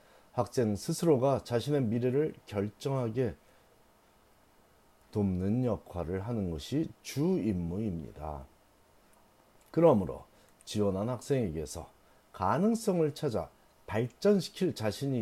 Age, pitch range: 40-59, 105-165 Hz